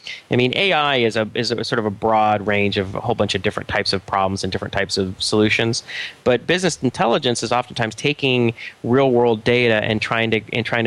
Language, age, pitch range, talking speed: English, 30-49, 105-125 Hz, 220 wpm